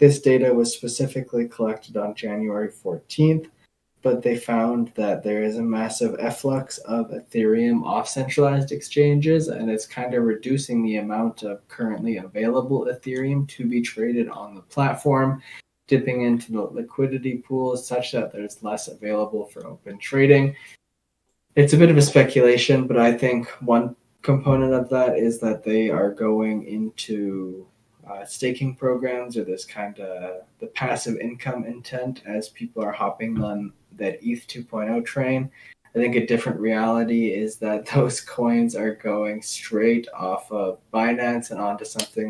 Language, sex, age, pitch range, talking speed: English, male, 20-39, 110-130 Hz, 155 wpm